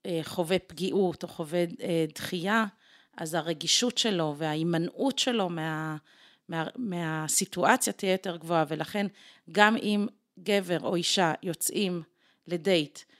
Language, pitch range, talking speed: Hebrew, 175-215 Hz, 120 wpm